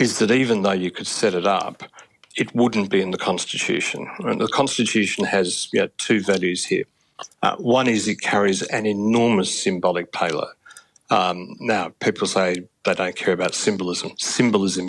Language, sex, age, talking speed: English, male, 60-79, 160 wpm